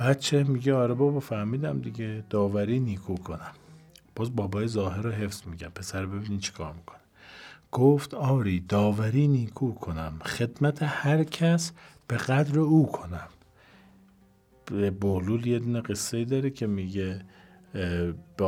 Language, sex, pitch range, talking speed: Persian, male, 95-140 Hz, 125 wpm